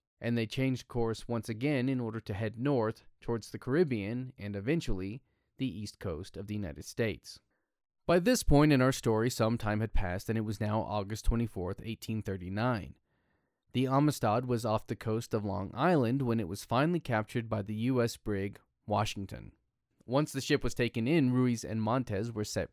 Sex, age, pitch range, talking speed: male, 20-39, 105-125 Hz, 185 wpm